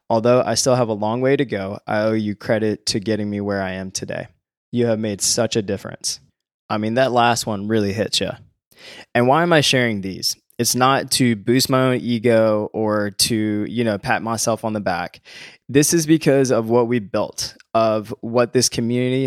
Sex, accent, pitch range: male, American, 105-125 Hz